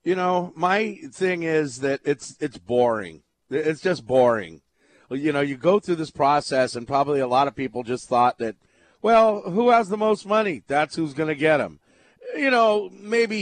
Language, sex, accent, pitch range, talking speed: English, male, American, 140-195 Hz, 190 wpm